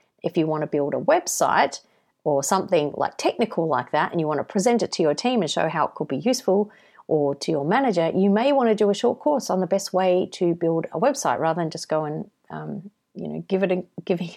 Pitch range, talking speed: 170-220 Hz, 255 wpm